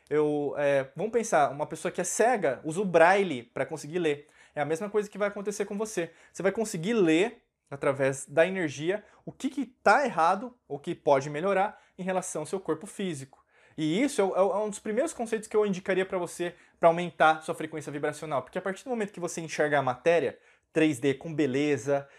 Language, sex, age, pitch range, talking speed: Portuguese, male, 20-39, 145-185 Hz, 210 wpm